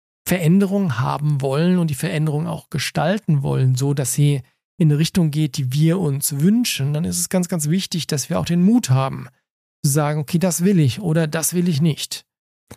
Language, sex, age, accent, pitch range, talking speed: German, male, 40-59, German, 145-180 Hz, 200 wpm